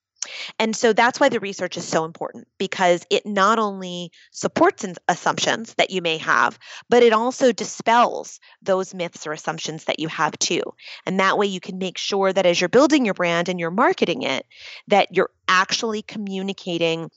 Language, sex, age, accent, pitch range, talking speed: English, female, 30-49, American, 175-225 Hz, 180 wpm